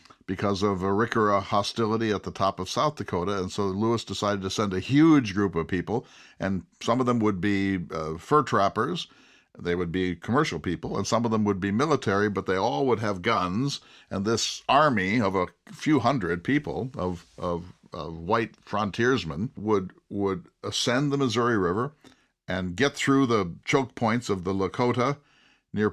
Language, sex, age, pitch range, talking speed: English, male, 50-69, 95-115 Hz, 180 wpm